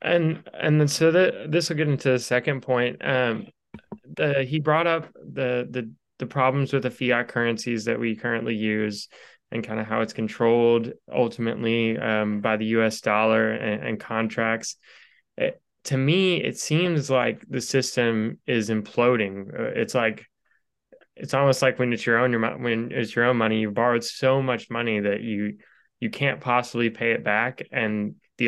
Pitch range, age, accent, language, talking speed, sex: 110-125 Hz, 20-39, American, English, 180 wpm, male